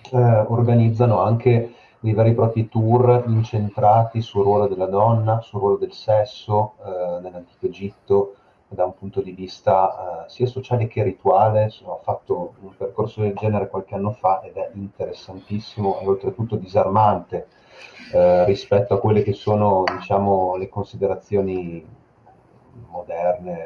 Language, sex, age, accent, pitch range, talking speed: Italian, male, 30-49, native, 95-115 Hz, 140 wpm